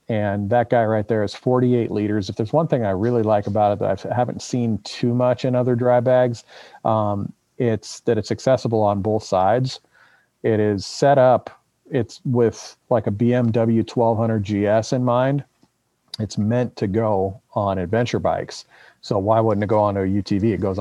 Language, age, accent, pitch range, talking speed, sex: English, 40-59, American, 100-120 Hz, 185 wpm, male